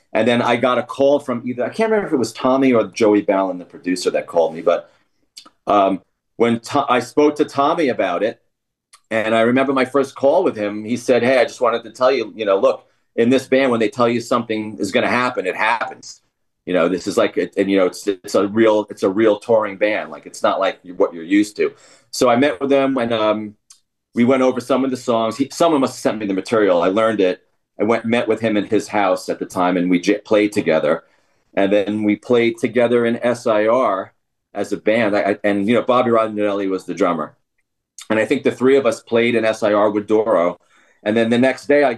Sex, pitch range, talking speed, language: male, 105-125 Hz, 240 wpm, English